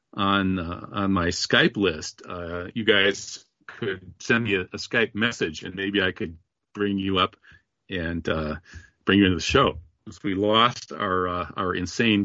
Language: English